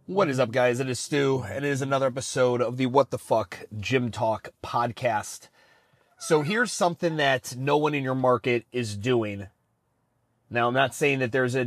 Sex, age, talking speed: male, 30-49, 195 wpm